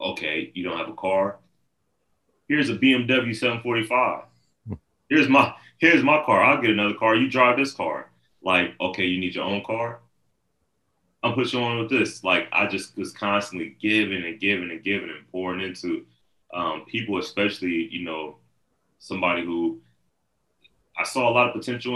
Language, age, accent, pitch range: English, 30-49, American, 75-110 Hz